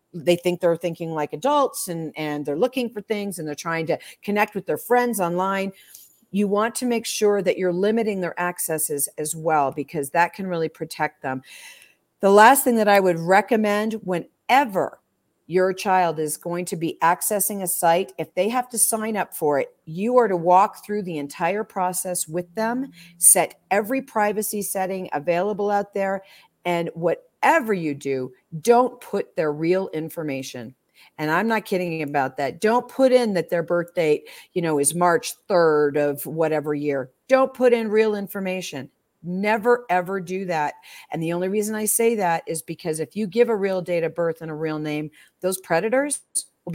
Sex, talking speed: female, 185 wpm